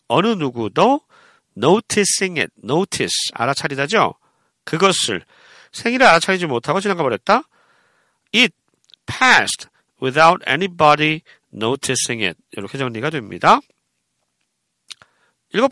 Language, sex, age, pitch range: Korean, male, 40-59, 130-220 Hz